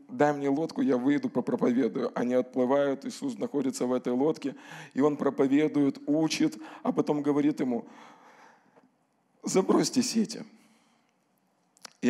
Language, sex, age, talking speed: Russian, male, 20-39, 125 wpm